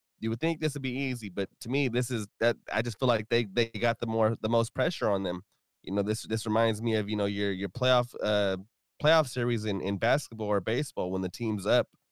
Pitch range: 105-120 Hz